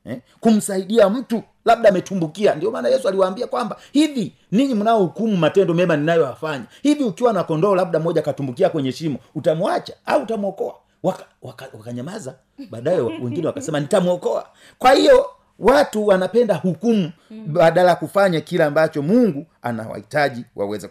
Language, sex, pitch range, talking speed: Swahili, male, 145-205 Hz, 140 wpm